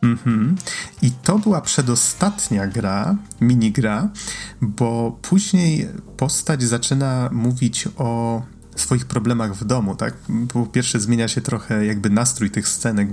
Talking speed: 125 wpm